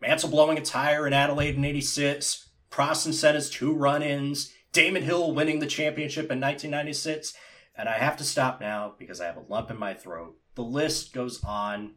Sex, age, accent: male, 30-49, American